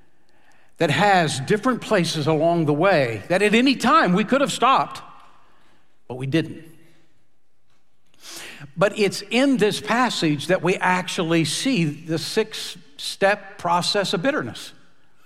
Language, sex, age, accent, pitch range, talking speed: English, male, 60-79, American, 155-210 Hz, 130 wpm